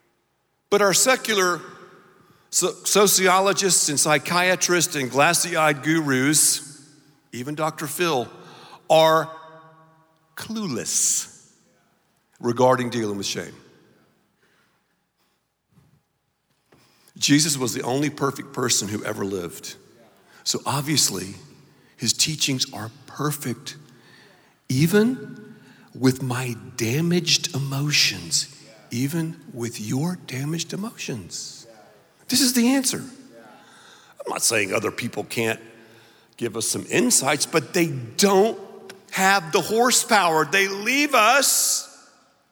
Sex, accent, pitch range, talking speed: male, American, 140-210 Hz, 95 wpm